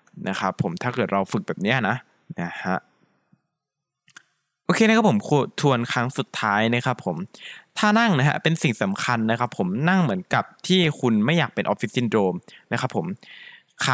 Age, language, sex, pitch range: 20-39, Thai, male, 115-170 Hz